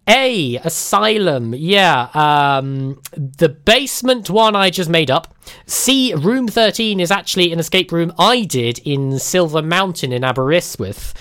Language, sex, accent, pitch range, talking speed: English, male, British, 135-200 Hz, 140 wpm